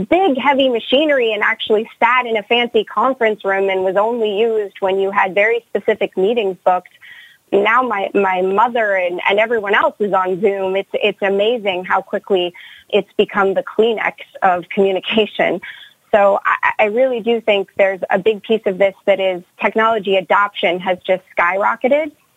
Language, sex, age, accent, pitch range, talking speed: English, female, 30-49, American, 190-220 Hz, 170 wpm